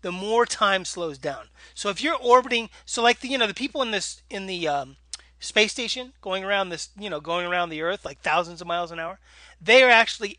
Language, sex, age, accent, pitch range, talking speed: English, male, 30-49, American, 140-205 Hz, 235 wpm